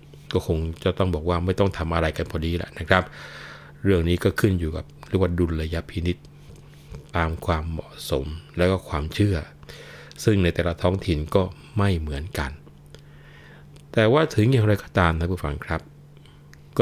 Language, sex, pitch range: Thai, male, 80-95 Hz